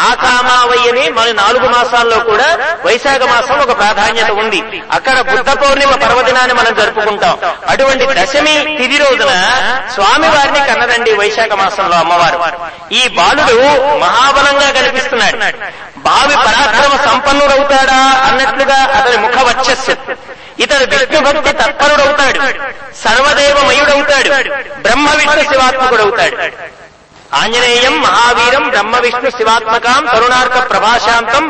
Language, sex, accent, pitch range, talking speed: English, male, Indian, 240-275 Hz, 45 wpm